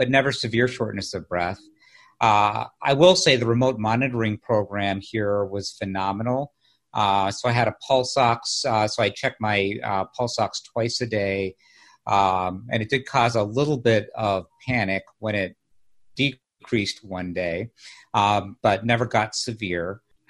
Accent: American